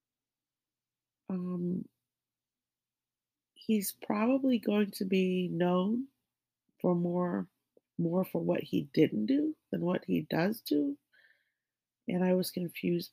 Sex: female